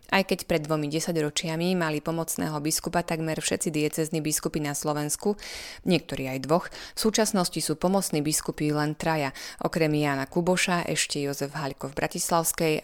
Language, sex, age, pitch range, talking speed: Slovak, female, 20-39, 150-170 Hz, 150 wpm